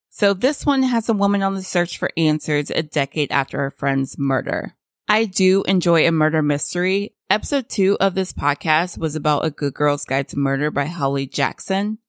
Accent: American